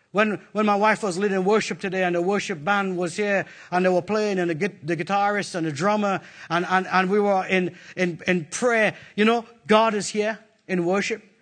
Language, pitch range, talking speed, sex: English, 210-310 Hz, 215 wpm, male